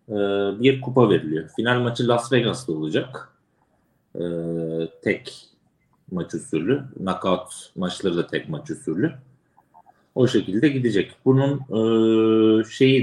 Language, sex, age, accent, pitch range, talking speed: Turkish, male, 40-59, native, 95-125 Hz, 100 wpm